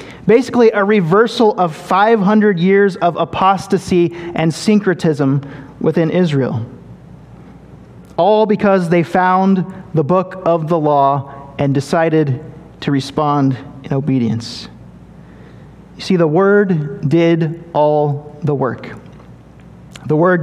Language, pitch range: English, 155-200 Hz